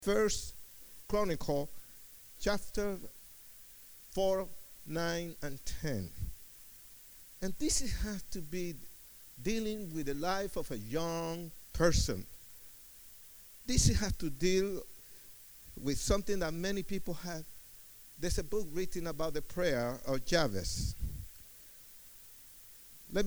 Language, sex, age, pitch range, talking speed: English, male, 50-69, 105-160 Hz, 105 wpm